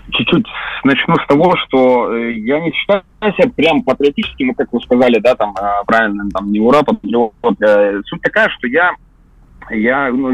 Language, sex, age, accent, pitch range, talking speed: Russian, male, 30-49, native, 115-190 Hz, 150 wpm